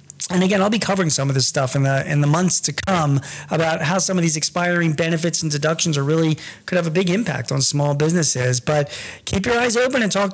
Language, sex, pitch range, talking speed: English, male, 155-200 Hz, 245 wpm